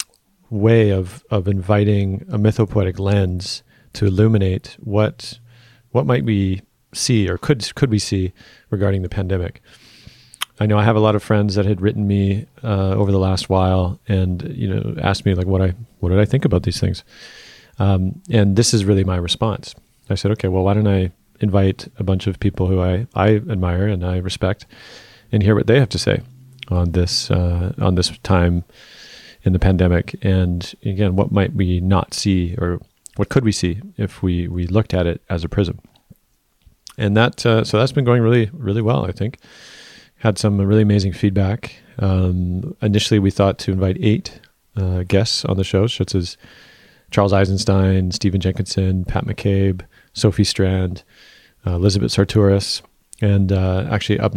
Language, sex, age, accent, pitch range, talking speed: English, male, 40-59, American, 95-110 Hz, 180 wpm